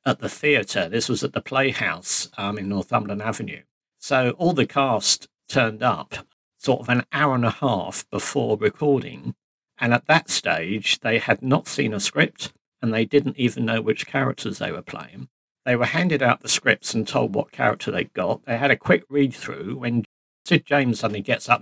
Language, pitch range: English, 115-145 Hz